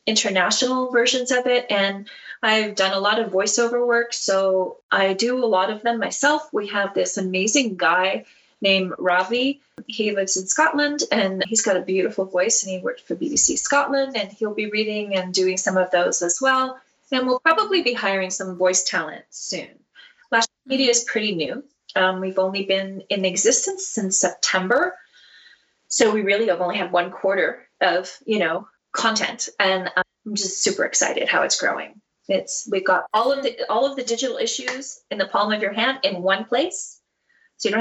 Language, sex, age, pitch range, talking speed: English, female, 20-39, 190-250 Hz, 190 wpm